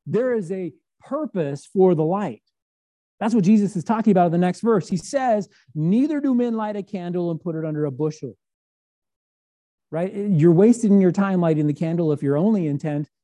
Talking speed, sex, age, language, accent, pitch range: 195 wpm, male, 40-59, English, American, 150-195 Hz